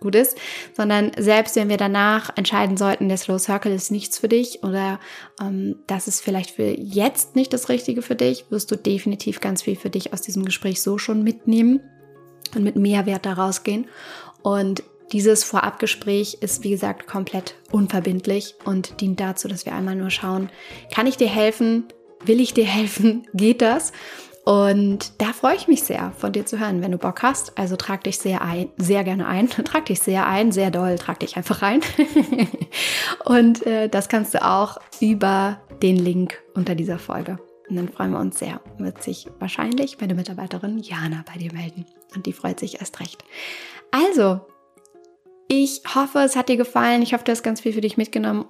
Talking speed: 190 wpm